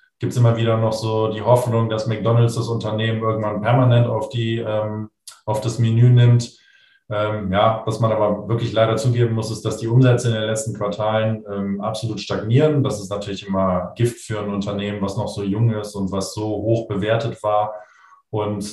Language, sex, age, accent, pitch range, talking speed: German, male, 20-39, German, 105-115 Hz, 190 wpm